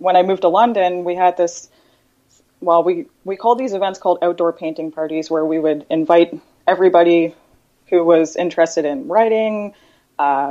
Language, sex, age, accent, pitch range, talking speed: English, female, 20-39, American, 155-185 Hz, 165 wpm